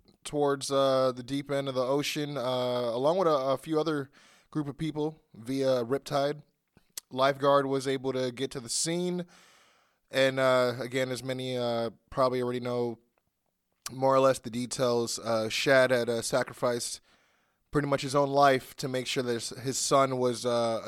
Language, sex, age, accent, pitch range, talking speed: English, male, 20-39, American, 115-135 Hz, 175 wpm